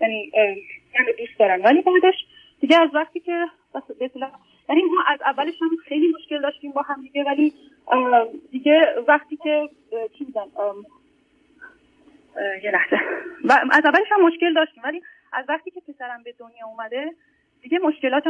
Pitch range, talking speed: 235-310 Hz, 135 wpm